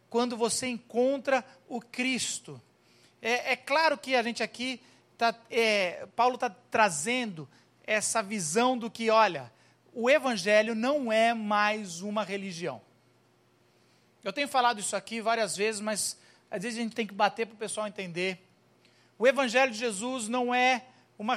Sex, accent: male, Brazilian